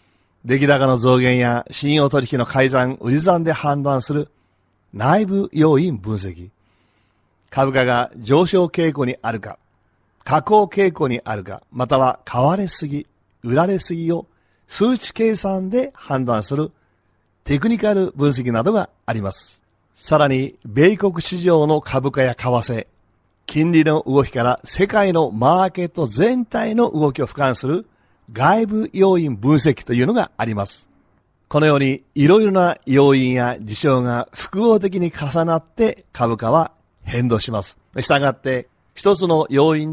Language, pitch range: Japanese, 115-165 Hz